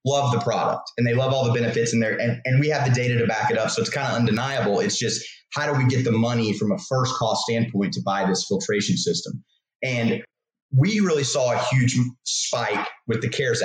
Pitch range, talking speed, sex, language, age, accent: 120-140 Hz, 240 wpm, male, English, 30-49, American